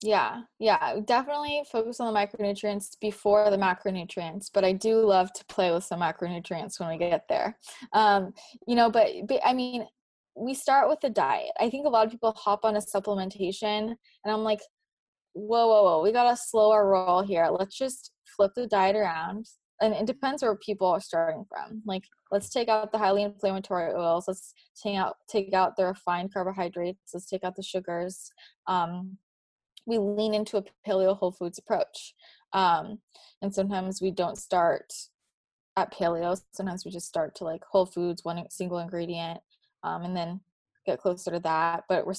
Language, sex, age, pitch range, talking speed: English, female, 20-39, 185-220 Hz, 185 wpm